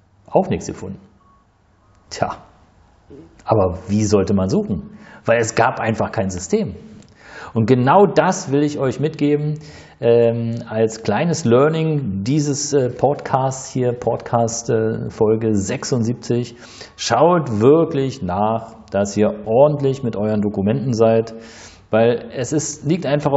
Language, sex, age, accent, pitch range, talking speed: German, male, 40-59, German, 110-145 Hz, 120 wpm